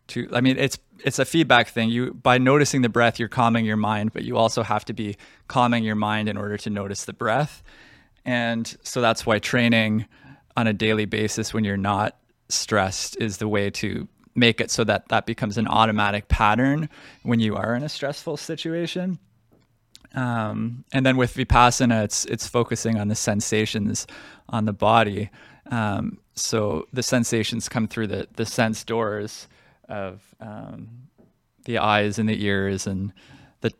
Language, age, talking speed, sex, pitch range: English, 20-39, 175 wpm, male, 105-125 Hz